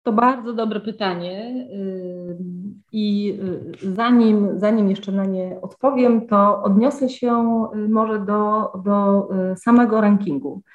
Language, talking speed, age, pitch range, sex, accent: Polish, 105 wpm, 40-59, 190-235 Hz, female, native